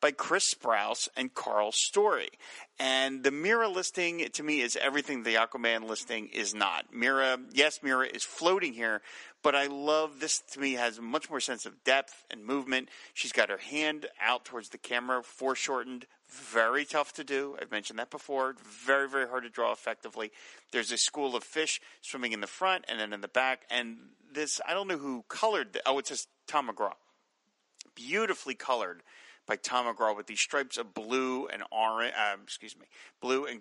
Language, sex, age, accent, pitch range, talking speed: English, male, 40-59, American, 120-145 Hz, 185 wpm